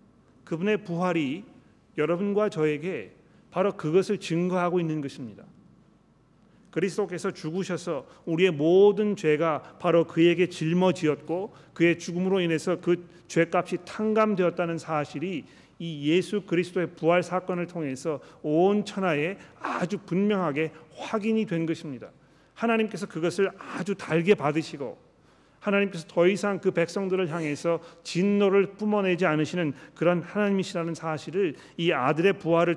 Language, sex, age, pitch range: Korean, male, 40-59, 145-185 Hz